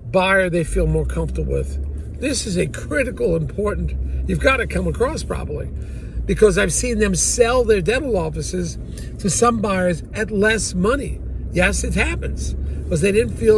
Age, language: 50-69, English